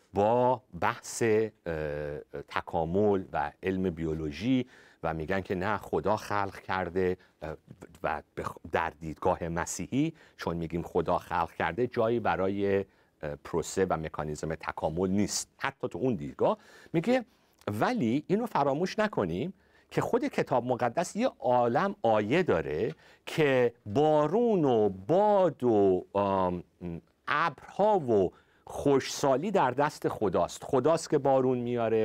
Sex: male